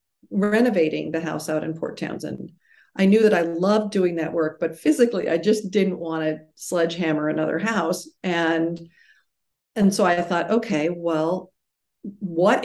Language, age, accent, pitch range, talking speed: English, 50-69, American, 165-215 Hz, 150 wpm